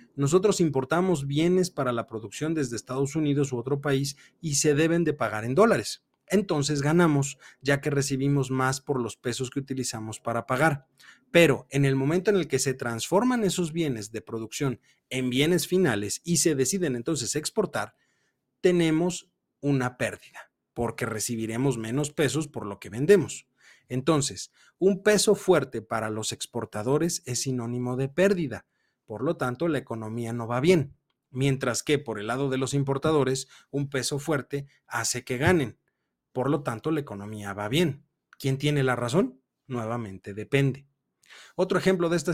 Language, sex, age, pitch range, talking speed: Spanish, male, 40-59, 125-155 Hz, 160 wpm